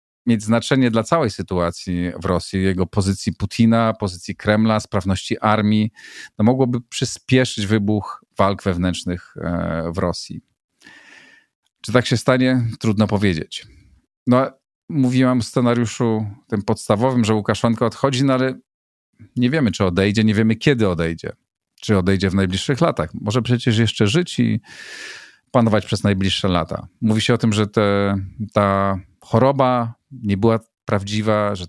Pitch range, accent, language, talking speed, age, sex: 100-120 Hz, native, Polish, 140 wpm, 40-59, male